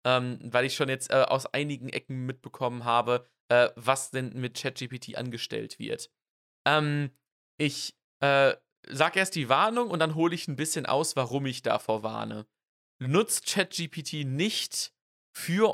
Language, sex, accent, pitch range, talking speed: German, male, German, 125-165 Hz, 155 wpm